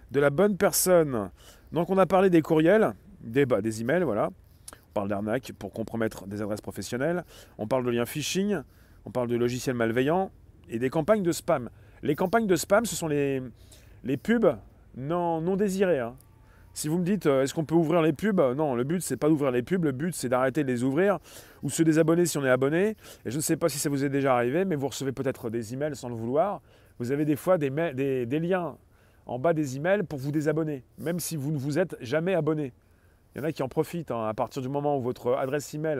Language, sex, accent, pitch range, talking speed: French, male, French, 120-165 Hz, 240 wpm